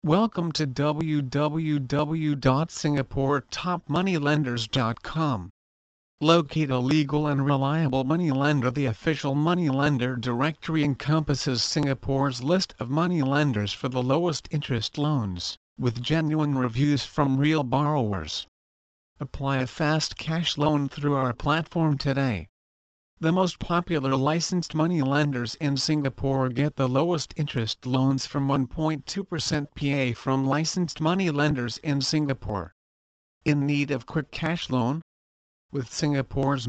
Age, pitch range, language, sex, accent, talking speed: 50-69, 125-155 Hz, English, male, American, 115 wpm